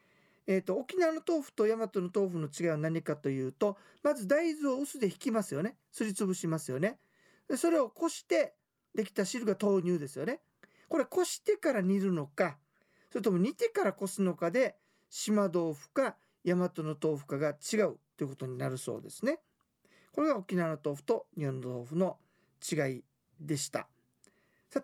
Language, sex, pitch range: Japanese, male, 160-245 Hz